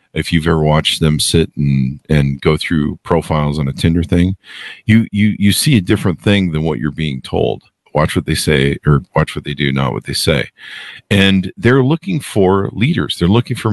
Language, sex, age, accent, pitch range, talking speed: English, male, 50-69, American, 85-110 Hz, 210 wpm